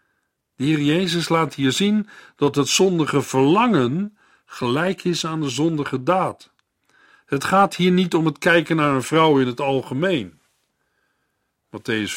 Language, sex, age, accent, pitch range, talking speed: Dutch, male, 50-69, Dutch, 120-170 Hz, 145 wpm